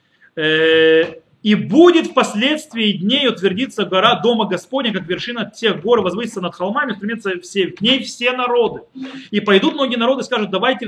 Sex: male